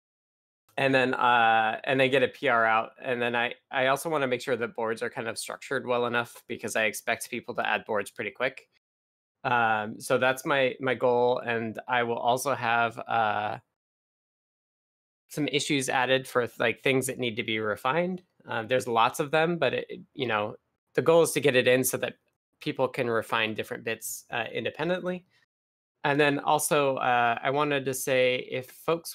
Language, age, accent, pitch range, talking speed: English, 20-39, American, 115-135 Hz, 190 wpm